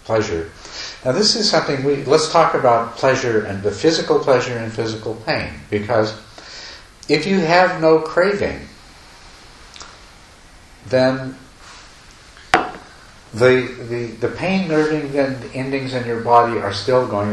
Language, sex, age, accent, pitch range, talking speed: English, male, 50-69, American, 100-125 Hz, 130 wpm